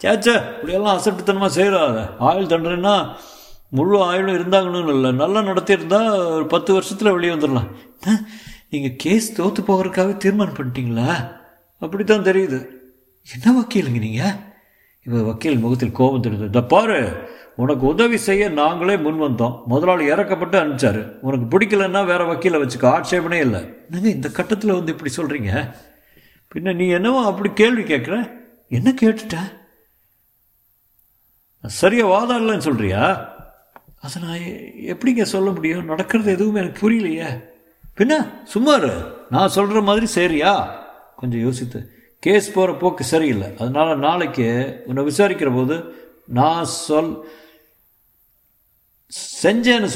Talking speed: 115 wpm